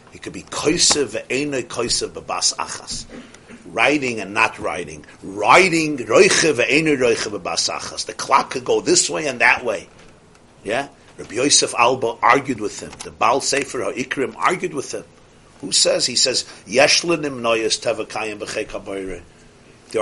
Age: 50-69